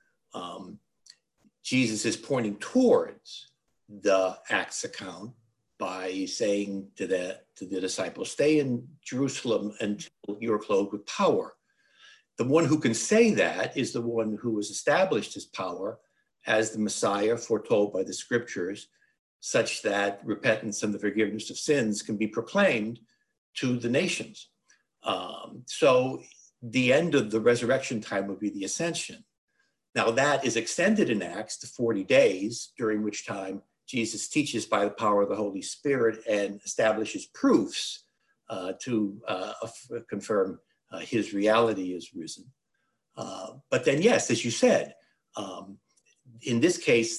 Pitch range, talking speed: 105-130 Hz, 145 wpm